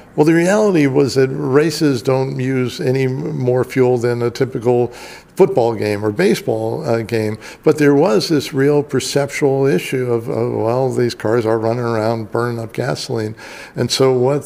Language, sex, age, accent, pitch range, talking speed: English, male, 60-79, American, 120-135 Hz, 165 wpm